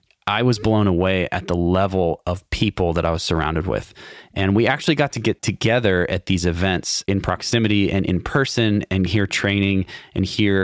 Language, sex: English, male